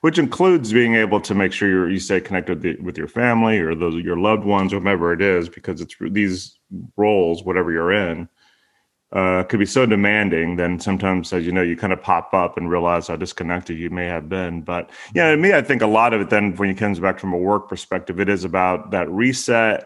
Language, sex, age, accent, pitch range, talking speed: English, male, 30-49, American, 90-110 Hz, 230 wpm